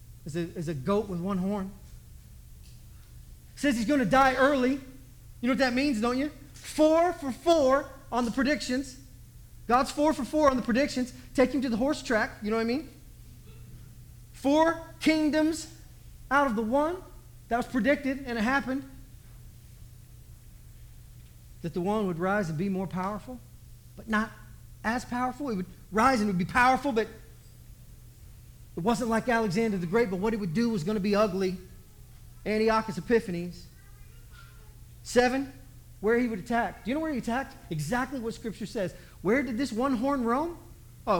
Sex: male